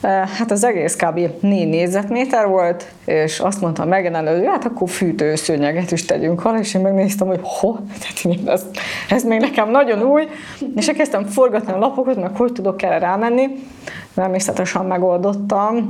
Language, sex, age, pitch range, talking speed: Hungarian, female, 20-39, 180-215 Hz, 160 wpm